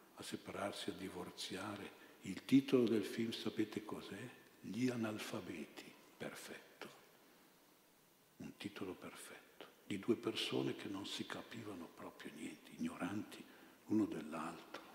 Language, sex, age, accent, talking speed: Italian, male, 60-79, native, 110 wpm